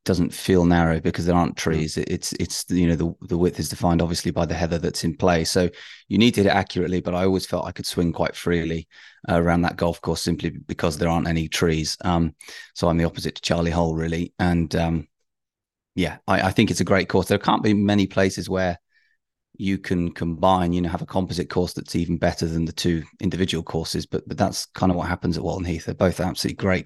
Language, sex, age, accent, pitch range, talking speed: English, male, 30-49, British, 85-95 Hz, 235 wpm